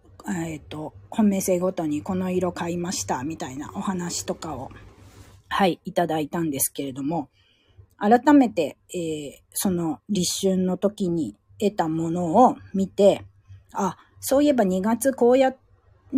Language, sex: Japanese, female